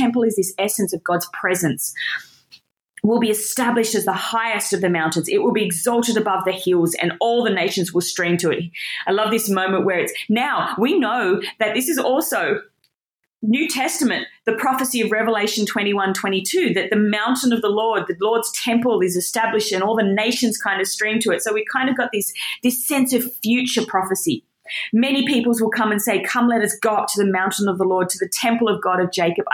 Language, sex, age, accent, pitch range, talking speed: English, female, 30-49, Australian, 195-240 Hz, 215 wpm